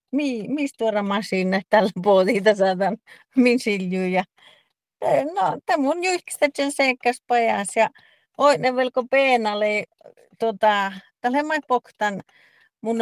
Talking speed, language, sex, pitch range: 135 wpm, Finnish, female, 190-245 Hz